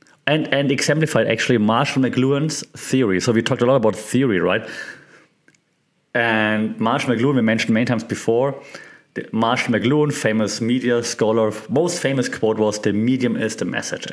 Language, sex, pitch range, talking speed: English, male, 115-155 Hz, 160 wpm